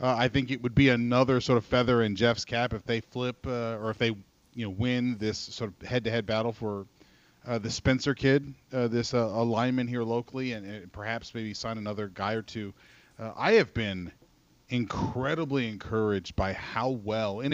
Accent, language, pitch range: American, English, 105-125 Hz